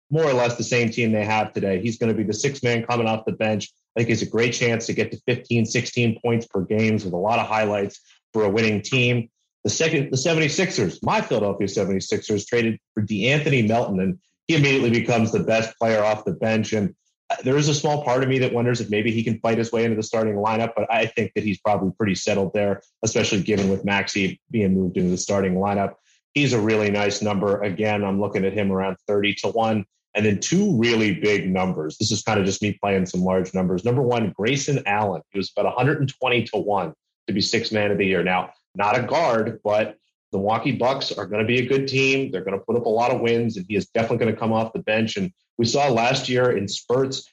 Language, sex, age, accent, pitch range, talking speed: English, male, 30-49, American, 105-120 Hz, 245 wpm